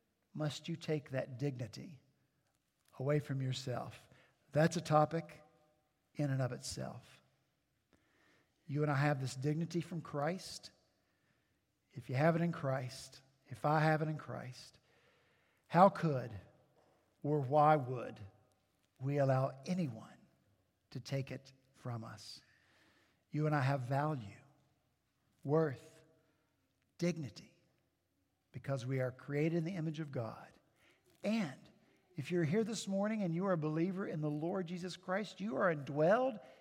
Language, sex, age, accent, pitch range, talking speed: English, male, 50-69, American, 135-205 Hz, 135 wpm